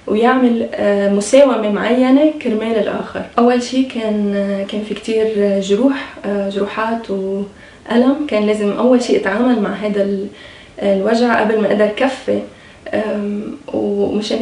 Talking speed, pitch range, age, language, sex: 110 wpm, 205-240 Hz, 20-39, Arabic, female